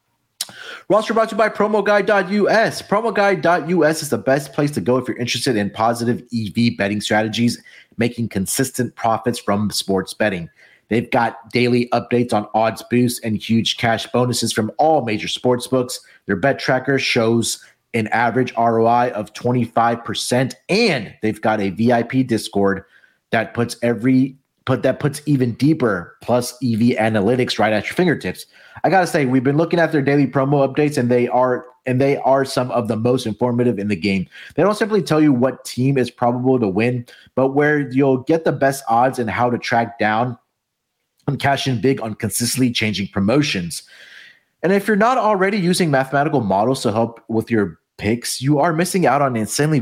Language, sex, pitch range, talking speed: English, male, 115-140 Hz, 180 wpm